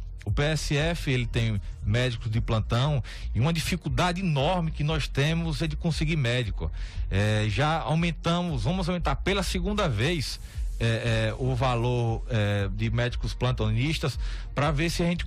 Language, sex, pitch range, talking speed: Portuguese, male, 115-155 Hz, 140 wpm